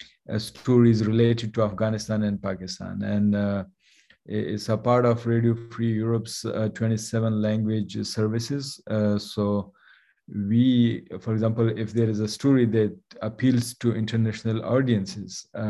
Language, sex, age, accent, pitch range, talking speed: English, male, 50-69, Indian, 105-120 Hz, 140 wpm